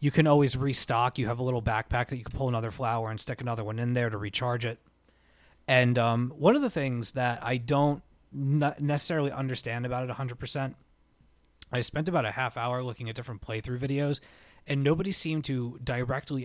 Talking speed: 195 wpm